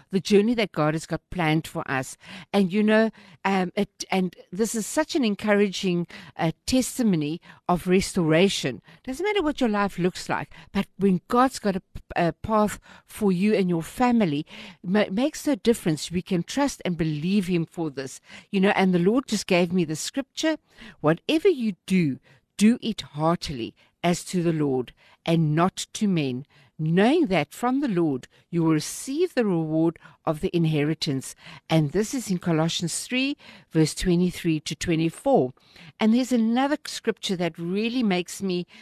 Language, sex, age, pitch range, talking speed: English, female, 60-79, 165-215 Hz, 175 wpm